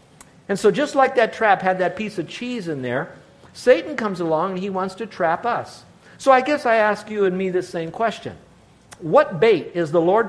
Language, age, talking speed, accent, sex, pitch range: English, 50-69, 220 wpm, American, male, 160-200 Hz